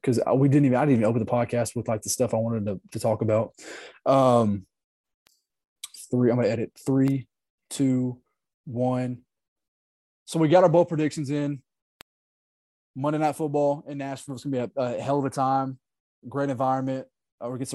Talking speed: 185 wpm